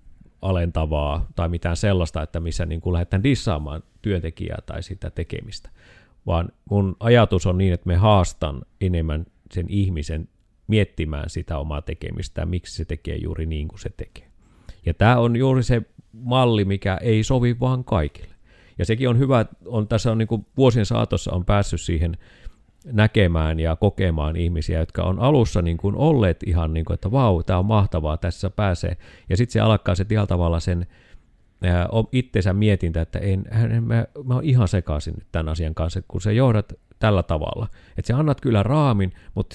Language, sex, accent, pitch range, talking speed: Finnish, male, native, 85-115 Hz, 165 wpm